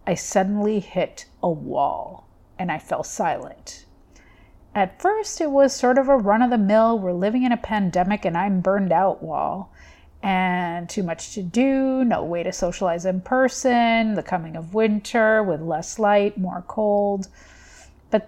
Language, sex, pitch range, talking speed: English, female, 170-205 Hz, 165 wpm